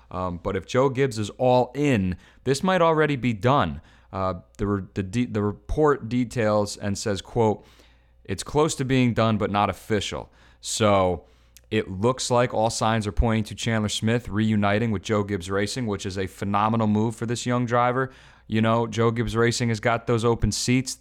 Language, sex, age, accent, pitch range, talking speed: English, male, 30-49, American, 95-120 Hz, 185 wpm